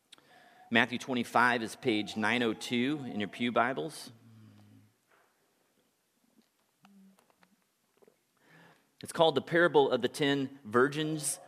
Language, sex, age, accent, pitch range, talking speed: English, male, 40-59, American, 110-145 Hz, 90 wpm